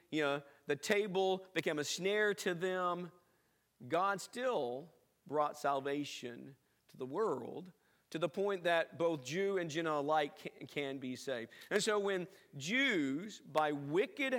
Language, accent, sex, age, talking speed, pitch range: English, American, male, 50-69, 140 wpm, 150-210 Hz